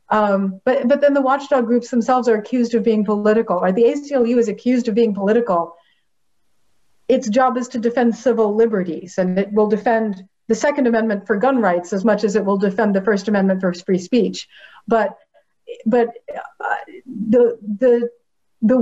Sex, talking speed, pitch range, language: female, 175 wpm, 215-260 Hz, English